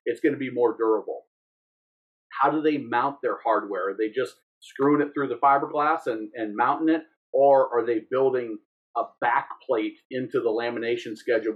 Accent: American